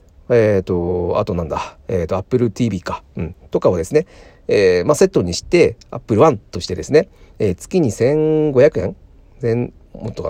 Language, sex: Japanese, male